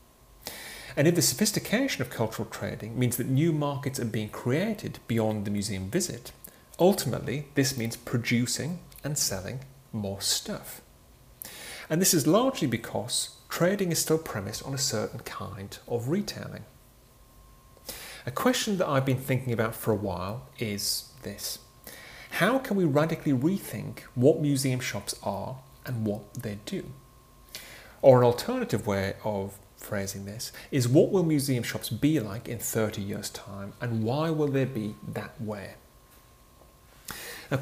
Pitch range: 105-150 Hz